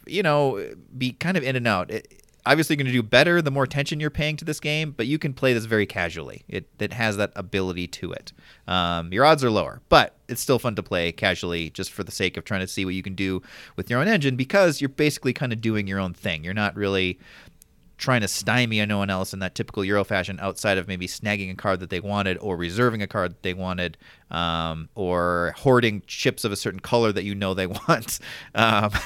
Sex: male